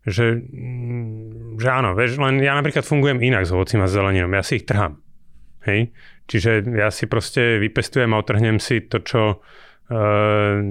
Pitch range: 100-115 Hz